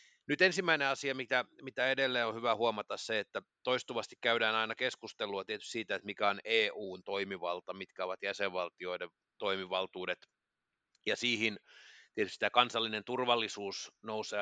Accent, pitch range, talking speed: native, 95-120 Hz, 135 wpm